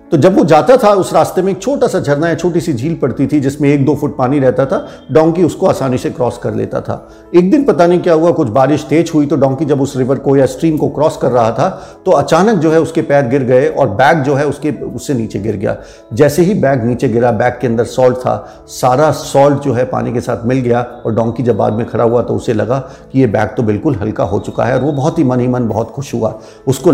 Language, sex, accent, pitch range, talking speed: Hindi, male, native, 125-160 Hz, 270 wpm